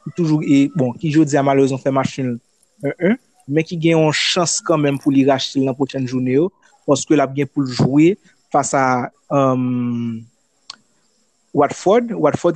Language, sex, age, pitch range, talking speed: French, male, 30-49, 130-155 Hz, 155 wpm